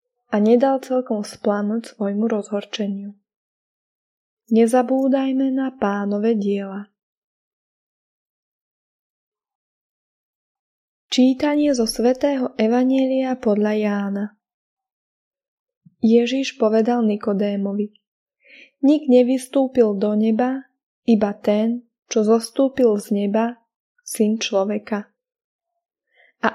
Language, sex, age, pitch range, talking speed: Slovak, female, 20-39, 210-260 Hz, 70 wpm